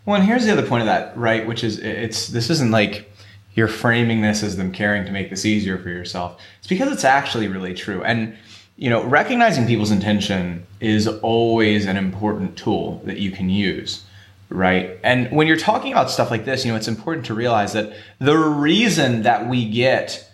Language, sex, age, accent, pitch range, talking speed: English, male, 20-39, American, 100-130 Hz, 205 wpm